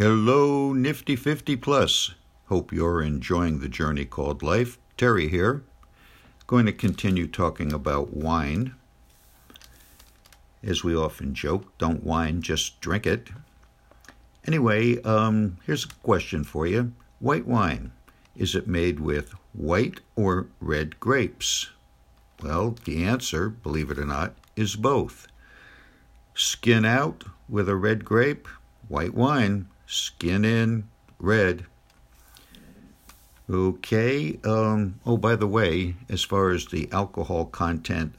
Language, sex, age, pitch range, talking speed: English, male, 60-79, 80-110 Hz, 120 wpm